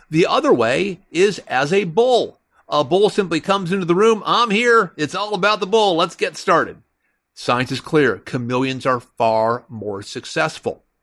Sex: male